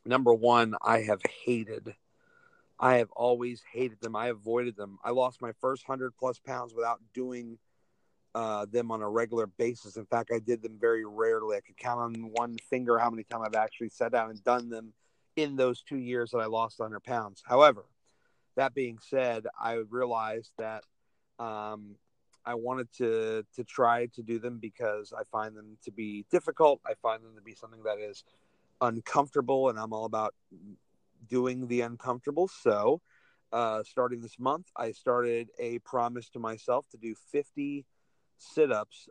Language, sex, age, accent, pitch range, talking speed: English, male, 40-59, American, 110-125 Hz, 175 wpm